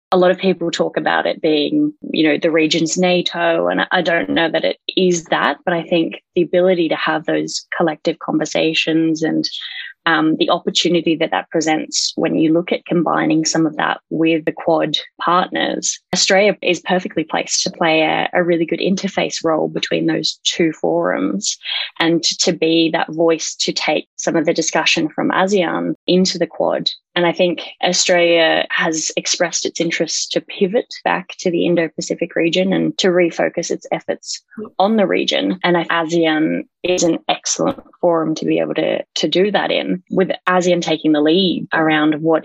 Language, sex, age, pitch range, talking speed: English, female, 20-39, 160-180 Hz, 180 wpm